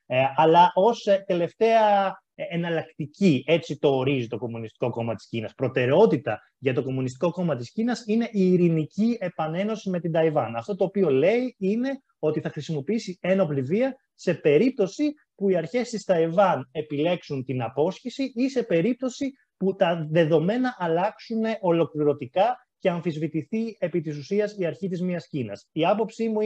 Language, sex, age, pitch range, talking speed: Greek, male, 30-49, 145-205 Hz, 150 wpm